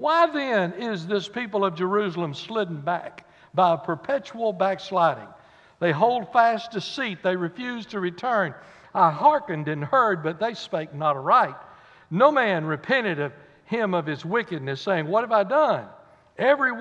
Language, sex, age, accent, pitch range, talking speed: English, male, 60-79, American, 160-210 Hz, 155 wpm